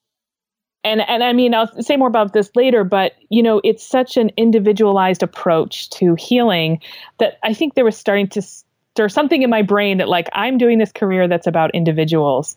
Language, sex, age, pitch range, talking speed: English, female, 30-49, 185-255 Hz, 195 wpm